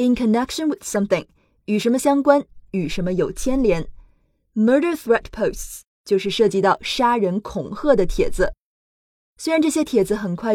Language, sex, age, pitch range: Chinese, female, 20-39, 195-265 Hz